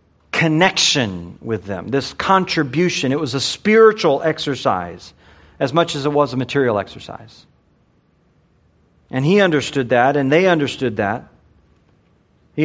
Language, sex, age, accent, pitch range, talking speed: English, male, 40-59, American, 110-165 Hz, 130 wpm